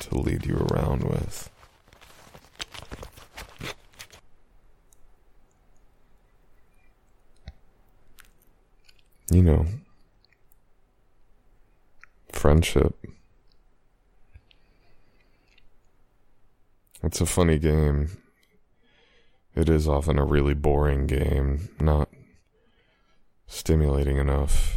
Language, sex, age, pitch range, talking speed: English, male, 30-49, 75-110 Hz, 55 wpm